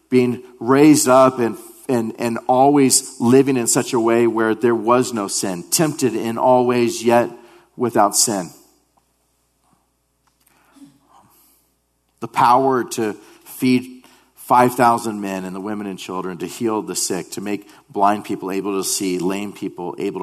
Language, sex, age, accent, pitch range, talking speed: English, male, 40-59, American, 95-145 Hz, 140 wpm